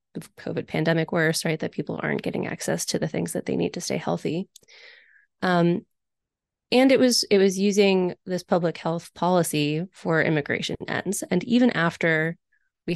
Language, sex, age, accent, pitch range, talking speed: English, female, 20-39, American, 165-215 Hz, 165 wpm